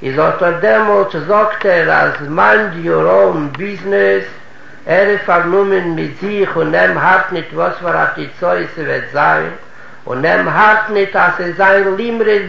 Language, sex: Hebrew, male